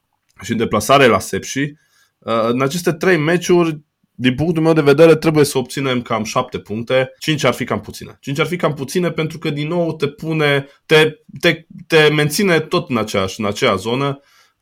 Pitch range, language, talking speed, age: 100-140 Hz, Romanian, 185 wpm, 20-39